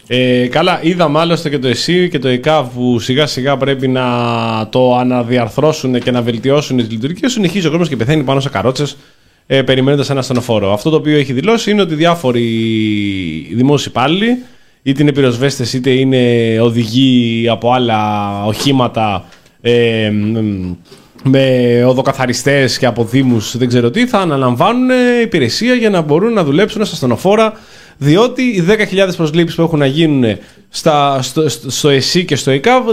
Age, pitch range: 20-39, 125-185 Hz